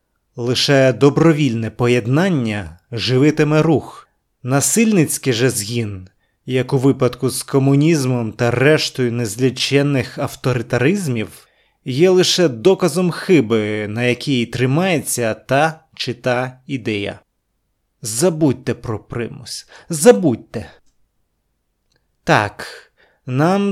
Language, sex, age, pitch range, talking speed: Ukrainian, male, 30-49, 115-150 Hz, 85 wpm